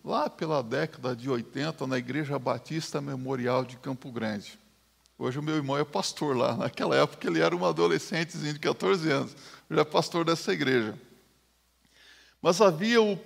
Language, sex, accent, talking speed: Portuguese, male, Brazilian, 165 wpm